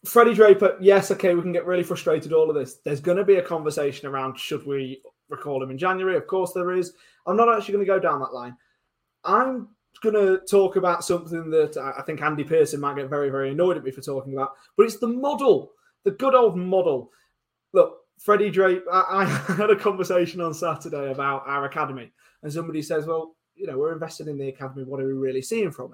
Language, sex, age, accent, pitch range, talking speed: English, male, 20-39, British, 145-195 Hz, 225 wpm